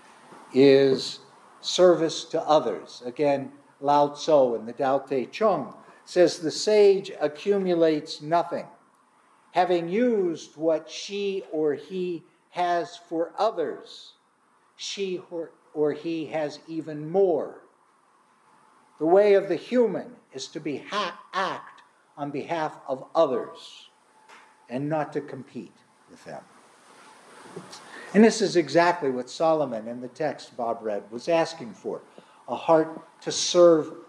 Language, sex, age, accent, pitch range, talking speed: English, male, 60-79, American, 145-185 Hz, 125 wpm